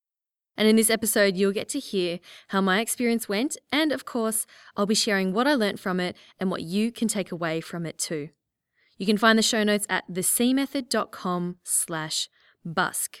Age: 20-39